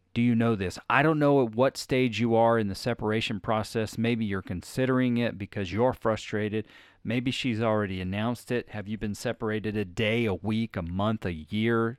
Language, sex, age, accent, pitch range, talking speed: English, male, 40-59, American, 95-115 Hz, 200 wpm